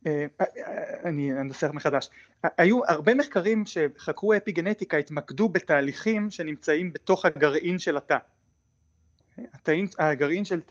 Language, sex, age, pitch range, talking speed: Hebrew, male, 30-49, 145-185 Hz, 95 wpm